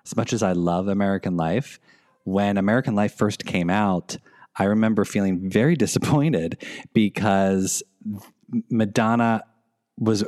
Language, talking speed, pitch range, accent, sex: English, 125 wpm, 95-115 Hz, American, male